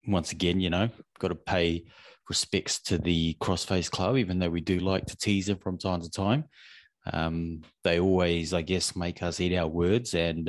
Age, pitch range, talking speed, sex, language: 30-49, 85-105 Hz, 200 wpm, male, English